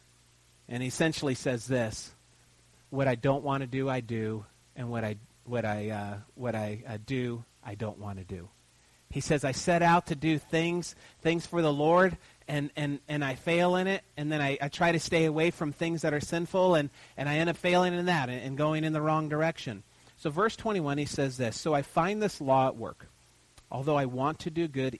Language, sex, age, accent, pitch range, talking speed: English, male, 40-59, American, 125-160 Hz, 225 wpm